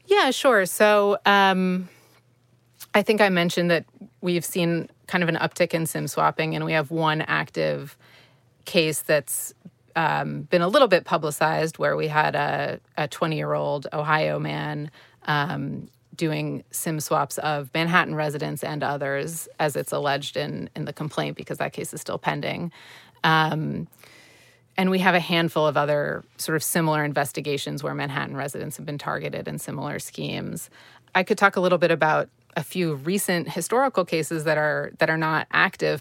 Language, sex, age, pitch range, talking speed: English, female, 30-49, 145-175 Hz, 165 wpm